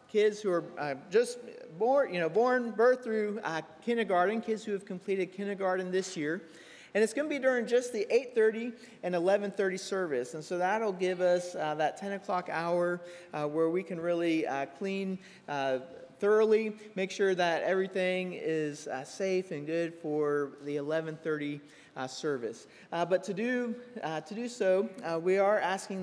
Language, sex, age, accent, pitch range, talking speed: English, male, 40-59, American, 160-210 Hz, 175 wpm